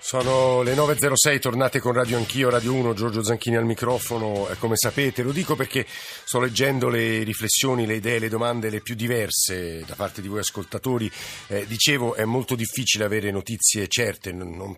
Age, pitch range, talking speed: 50-69, 100-120 Hz, 175 wpm